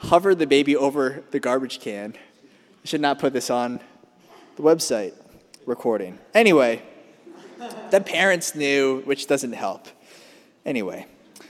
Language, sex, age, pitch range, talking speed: English, male, 20-39, 160-255 Hz, 125 wpm